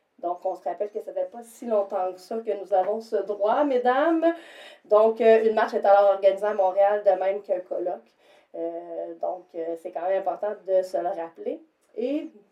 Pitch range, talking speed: 185-215 Hz, 200 wpm